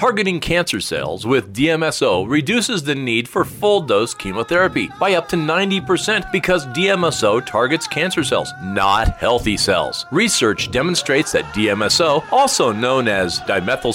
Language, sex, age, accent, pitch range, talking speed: English, male, 40-59, American, 130-185 Hz, 135 wpm